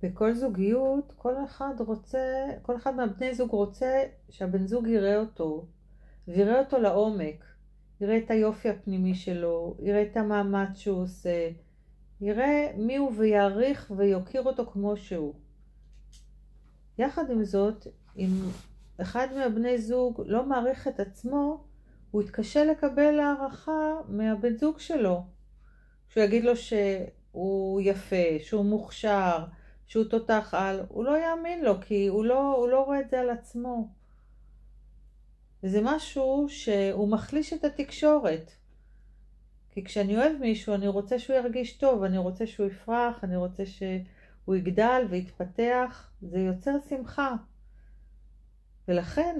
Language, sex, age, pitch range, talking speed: Hebrew, female, 40-59, 185-255 Hz, 130 wpm